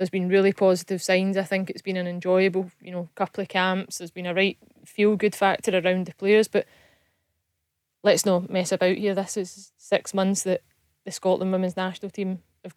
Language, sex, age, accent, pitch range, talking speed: English, female, 20-39, British, 185-200 Hz, 195 wpm